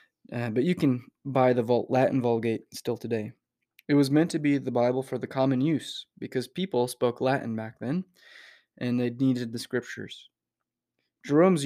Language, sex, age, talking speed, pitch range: English, male, 20-39, 170 wpm, 120-135 Hz